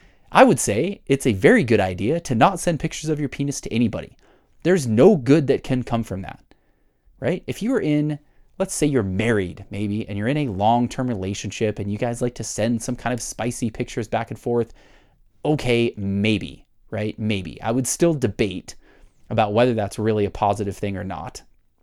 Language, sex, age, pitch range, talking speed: English, male, 30-49, 105-130 Hz, 200 wpm